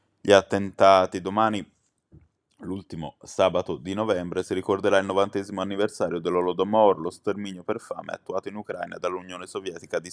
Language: Italian